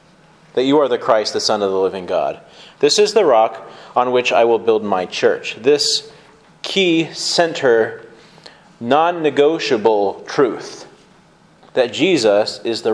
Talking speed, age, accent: 145 wpm, 30-49, American